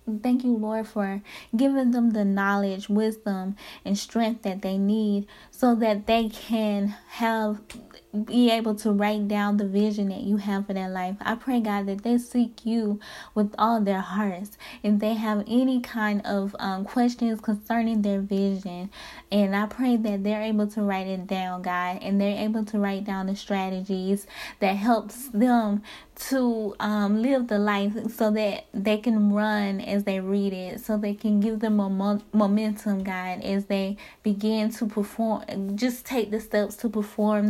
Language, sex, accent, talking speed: English, female, American, 180 wpm